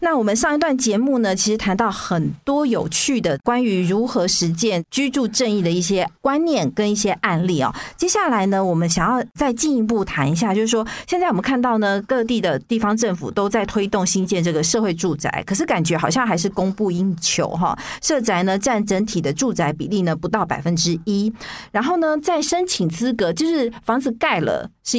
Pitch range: 175-245 Hz